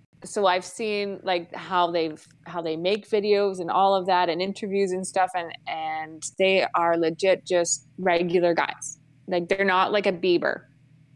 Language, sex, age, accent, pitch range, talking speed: English, female, 20-39, American, 165-210 Hz, 170 wpm